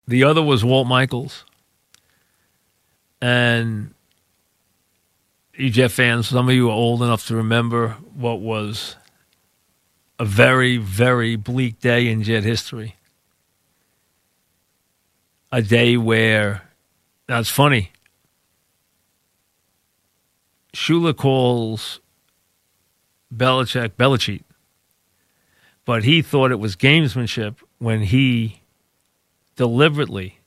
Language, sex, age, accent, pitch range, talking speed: English, male, 50-69, American, 105-125 Hz, 90 wpm